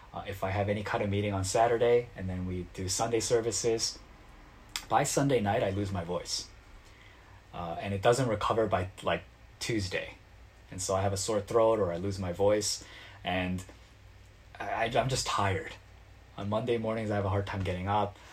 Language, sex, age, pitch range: Korean, male, 20-39, 95-110 Hz